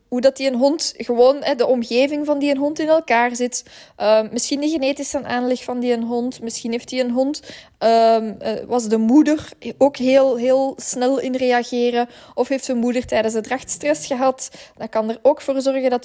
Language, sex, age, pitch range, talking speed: Dutch, female, 10-29, 230-270 Hz, 205 wpm